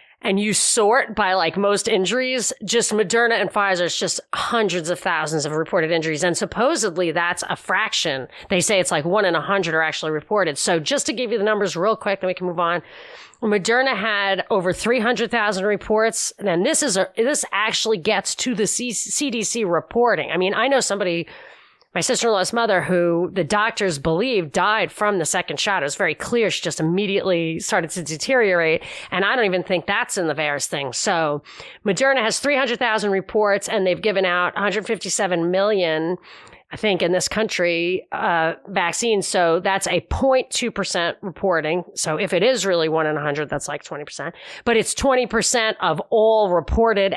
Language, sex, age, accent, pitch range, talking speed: English, female, 30-49, American, 175-220 Hz, 180 wpm